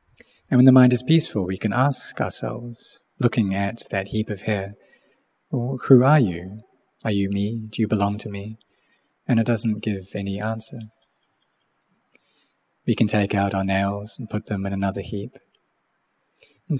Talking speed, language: 170 wpm, English